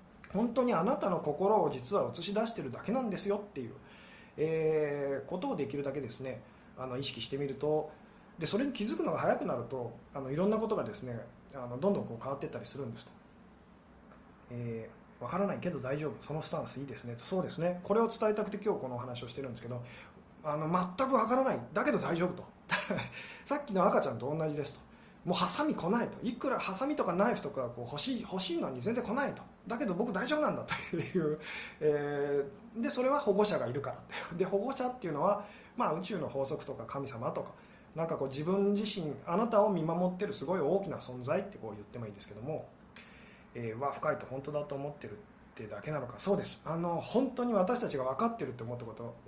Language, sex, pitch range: Japanese, male, 135-205 Hz